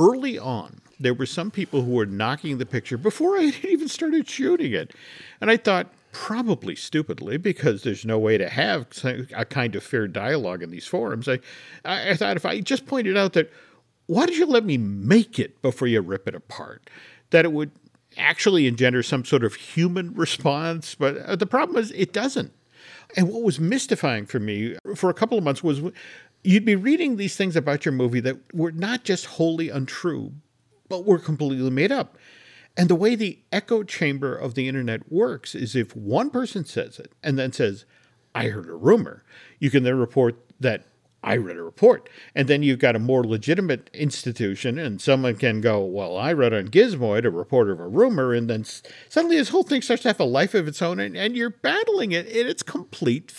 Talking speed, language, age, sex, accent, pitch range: 205 wpm, English, 50-69, male, American, 130-215 Hz